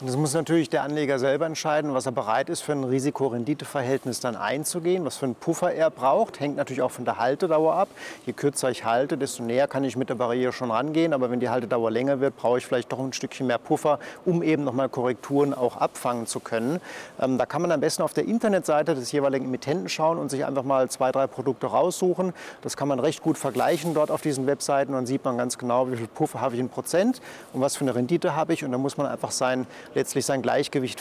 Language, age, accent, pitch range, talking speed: German, 40-59, German, 130-155 Hz, 240 wpm